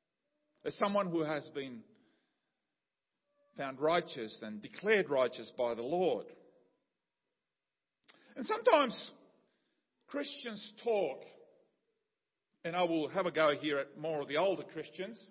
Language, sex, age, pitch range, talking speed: English, male, 50-69, 165-240 Hz, 120 wpm